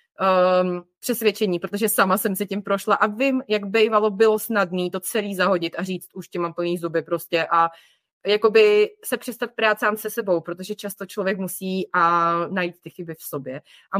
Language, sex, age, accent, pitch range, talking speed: Czech, female, 20-39, native, 180-235 Hz, 190 wpm